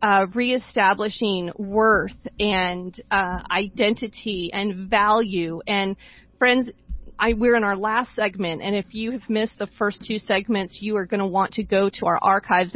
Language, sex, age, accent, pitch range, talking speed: English, female, 40-59, American, 195-225 Hz, 165 wpm